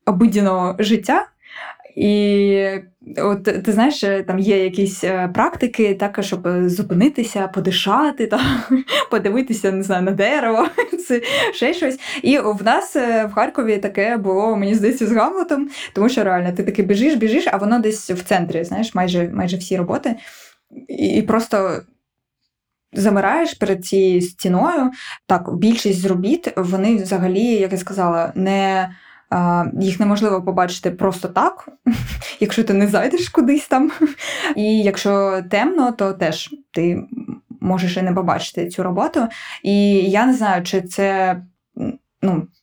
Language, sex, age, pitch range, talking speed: Ukrainian, female, 20-39, 185-230 Hz, 130 wpm